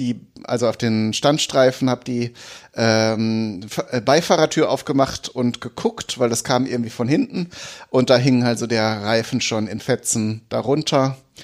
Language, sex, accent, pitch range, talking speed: German, male, German, 120-140 Hz, 155 wpm